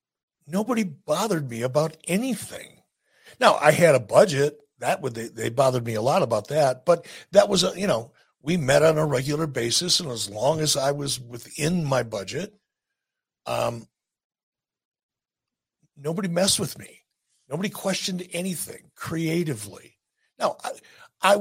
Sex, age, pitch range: male, 60-79, 125-170 Hz